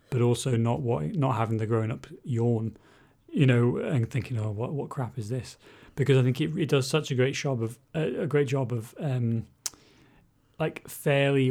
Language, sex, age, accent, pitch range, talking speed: English, male, 30-49, British, 115-135 Hz, 205 wpm